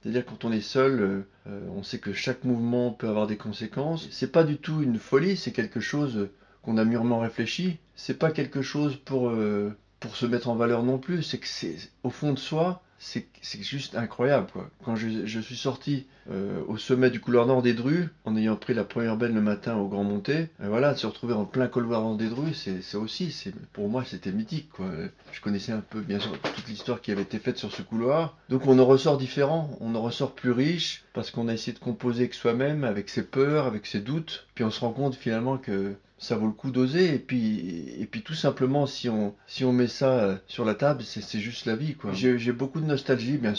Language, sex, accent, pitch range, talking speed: French, male, French, 110-135 Hz, 240 wpm